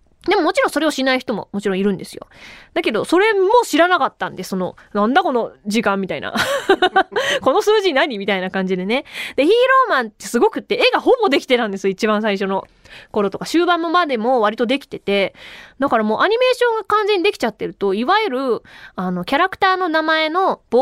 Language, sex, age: Japanese, female, 20-39